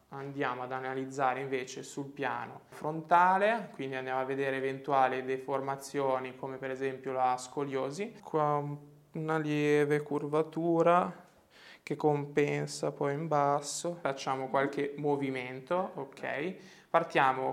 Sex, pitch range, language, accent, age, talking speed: male, 135-160 Hz, Italian, native, 20-39, 110 wpm